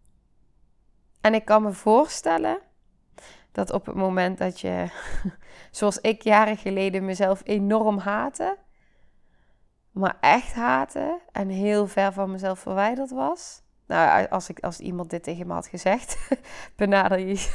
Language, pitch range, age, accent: Dutch, 195-260 Hz, 20-39, Dutch